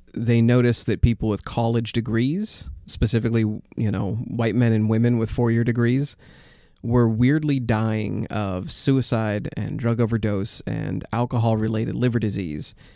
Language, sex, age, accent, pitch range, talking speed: English, male, 30-49, American, 105-120 Hz, 135 wpm